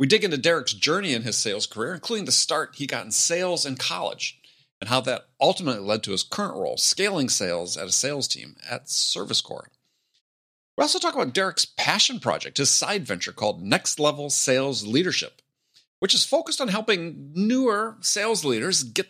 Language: English